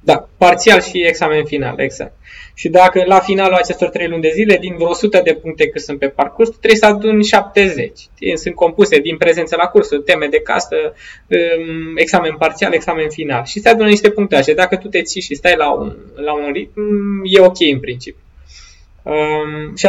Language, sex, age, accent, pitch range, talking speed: Romanian, male, 20-39, native, 155-200 Hz, 195 wpm